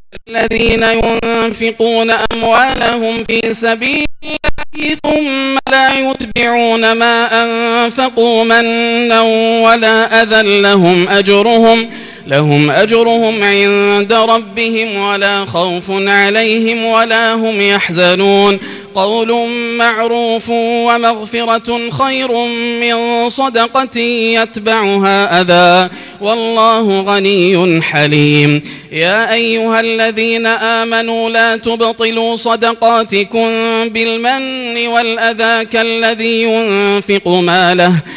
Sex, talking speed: male, 75 wpm